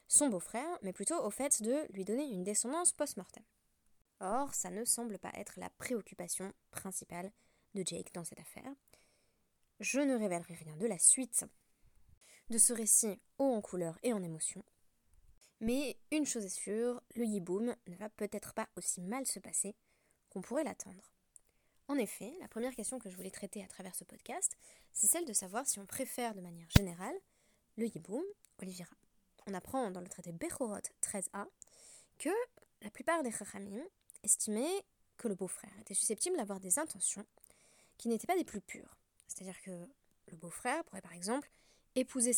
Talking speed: 175 wpm